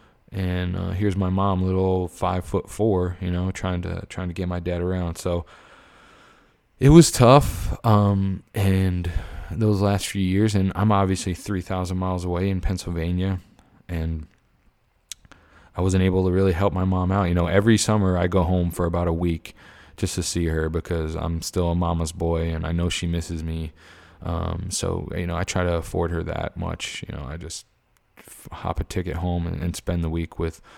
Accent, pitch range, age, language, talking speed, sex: American, 85-100 Hz, 20-39, English, 195 wpm, male